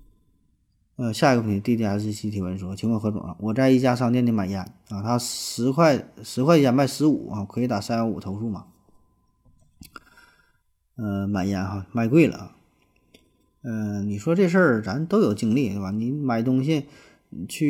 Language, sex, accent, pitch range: Chinese, male, native, 105-135 Hz